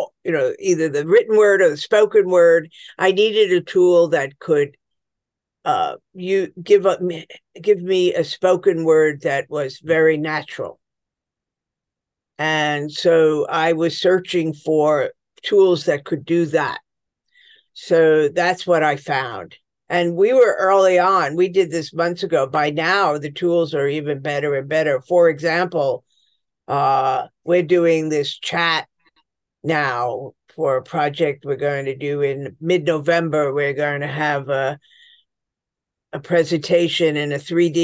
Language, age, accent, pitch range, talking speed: English, 50-69, American, 150-185 Hz, 145 wpm